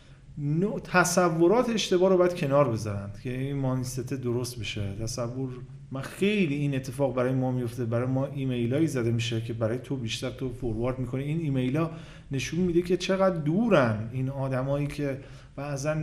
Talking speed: 155 wpm